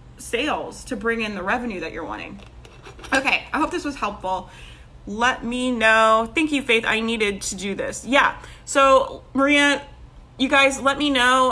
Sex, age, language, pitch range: female, 30-49, English, 200-255 Hz